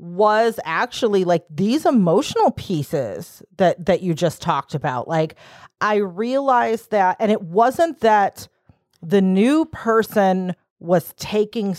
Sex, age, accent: female, 40-59, American